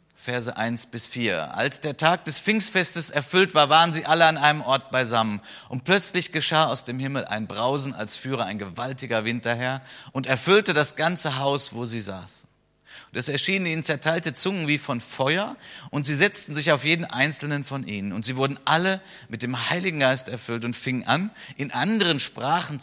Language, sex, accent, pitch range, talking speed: German, male, German, 120-155 Hz, 190 wpm